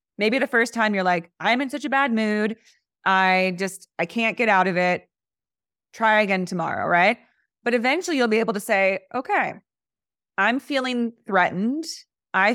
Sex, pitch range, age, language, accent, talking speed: female, 185-245 Hz, 20-39, English, American, 170 wpm